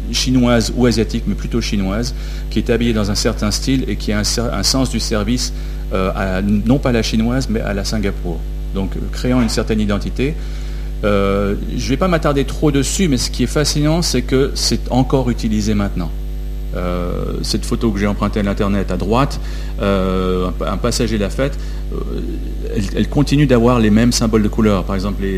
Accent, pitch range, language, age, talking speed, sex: French, 95-125 Hz, French, 40-59, 195 wpm, male